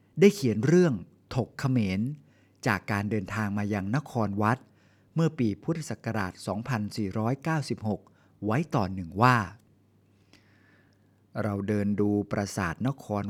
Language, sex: Thai, male